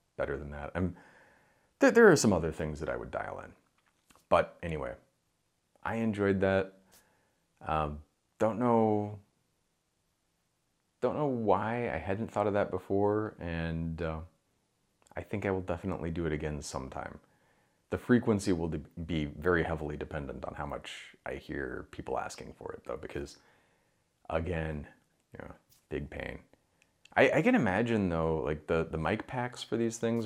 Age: 30-49